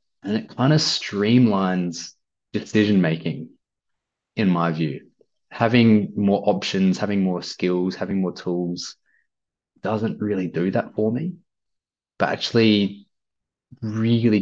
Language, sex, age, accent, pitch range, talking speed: English, male, 20-39, Australian, 85-105 Hz, 110 wpm